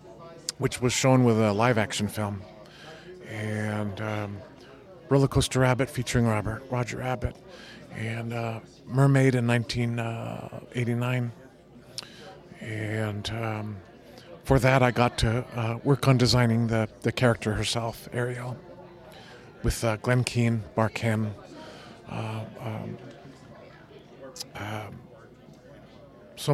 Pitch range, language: 110-135 Hz, English